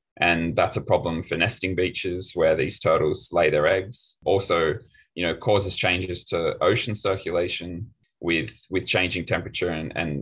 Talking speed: 160 wpm